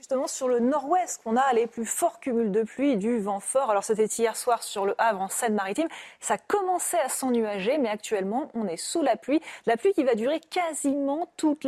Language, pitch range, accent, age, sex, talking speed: French, 230-320 Hz, French, 30-49, female, 215 wpm